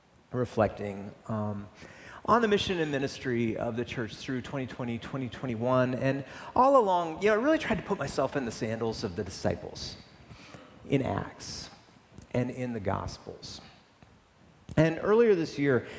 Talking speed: 150 wpm